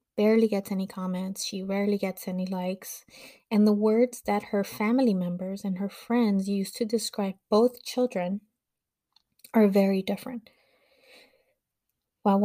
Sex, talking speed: female, 140 wpm